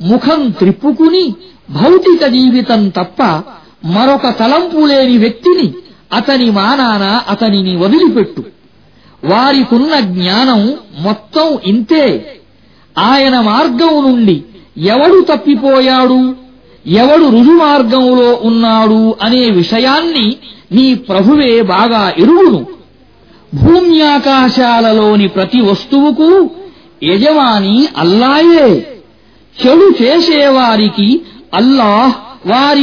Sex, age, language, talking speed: male, 50-69, Arabic, 70 wpm